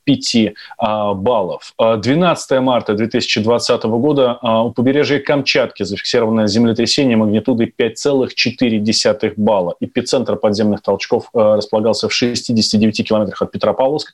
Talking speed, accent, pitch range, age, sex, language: 95 wpm, native, 105-120 Hz, 30-49, male, Russian